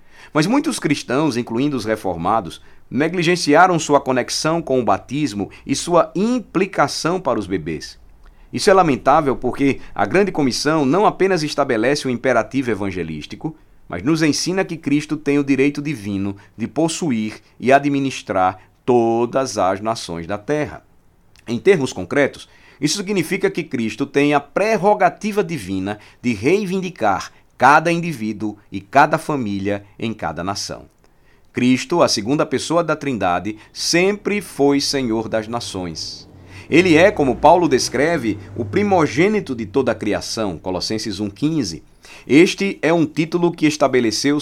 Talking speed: 135 wpm